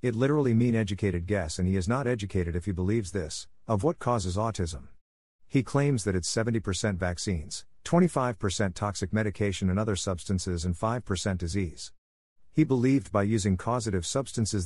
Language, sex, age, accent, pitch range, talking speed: English, male, 50-69, American, 85-115 Hz, 160 wpm